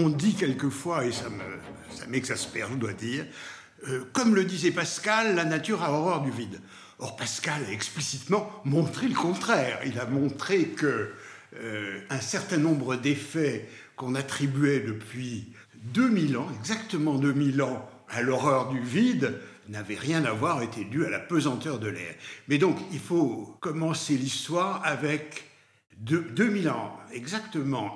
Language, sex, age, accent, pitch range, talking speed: French, male, 60-79, French, 130-180 Hz, 150 wpm